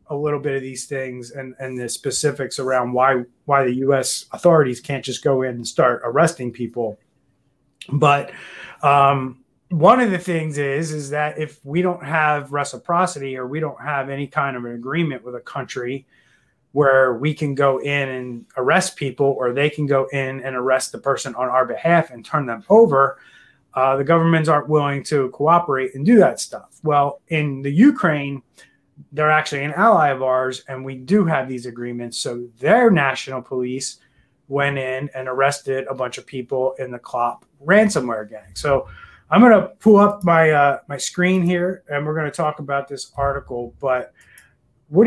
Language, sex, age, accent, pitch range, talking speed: English, male, 30-49, American, 130-155 Hz, 180 wpm